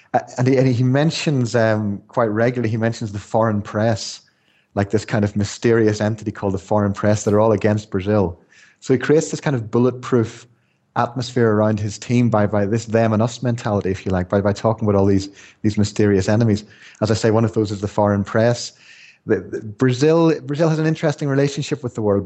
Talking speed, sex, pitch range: 215 wpm, male, 105-125 Hz